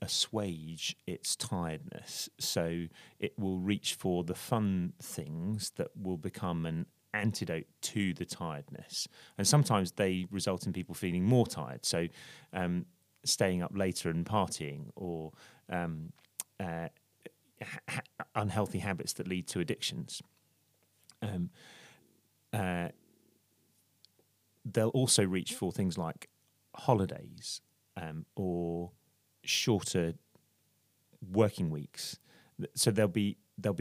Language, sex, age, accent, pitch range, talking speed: English, male, 30-49, British, 85-110 Hz, 110 wpm